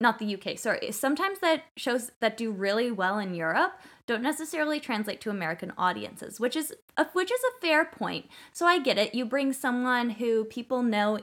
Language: English